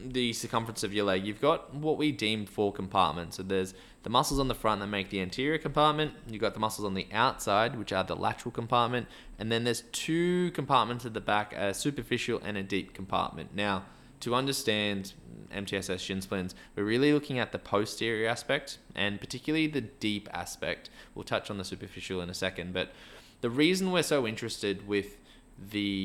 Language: English